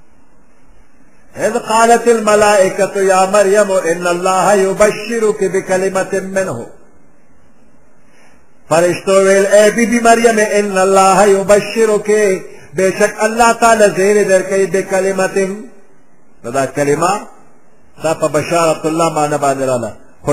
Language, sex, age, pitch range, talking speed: Persian, male, 50-69, 165-210 Hz, 75 wpm